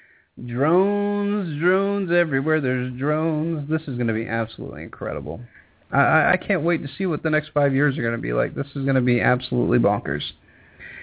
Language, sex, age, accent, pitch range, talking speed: English, male, 30-49, American, 120-155 Hz, 190 wpm